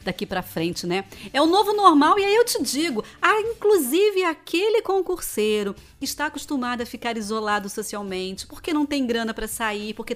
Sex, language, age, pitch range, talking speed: female, Portuguese, 40-59, 220-320 Hz, 185 wpm